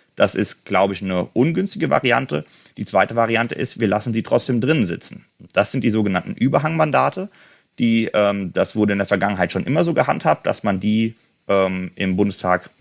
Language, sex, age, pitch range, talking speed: German, male, 30-49, 95-115 Hz, 175 wpm